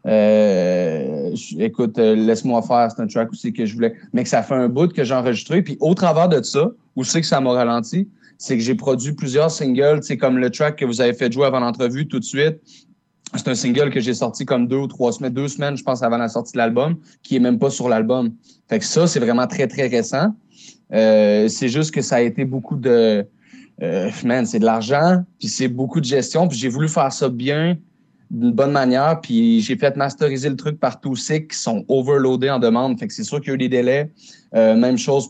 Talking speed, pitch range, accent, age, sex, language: 240 wpm, 120-175 Hz, Canadian, 30-49, male, French